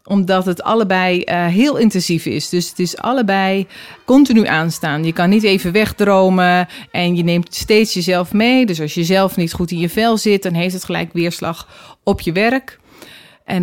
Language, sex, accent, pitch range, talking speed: Dutch, female, Dutch, 180-210 Hz, 190 wpm